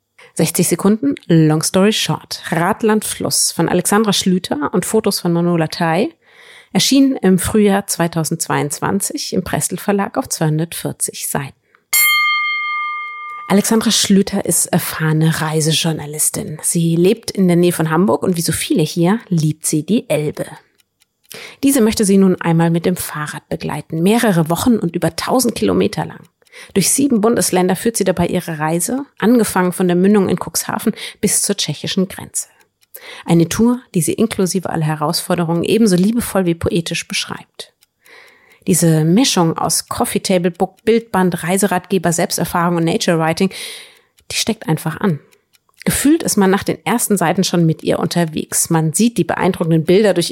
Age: 30-49